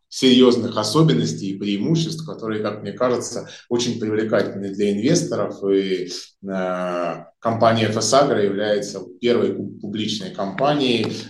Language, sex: Russian, male